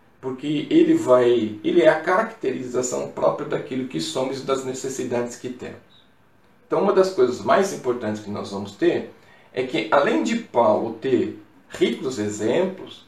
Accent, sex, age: Brazilian, male, 40-59